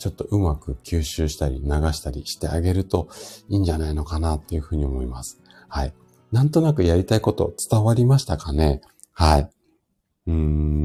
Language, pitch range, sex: Japanese, 80-110 Hz, male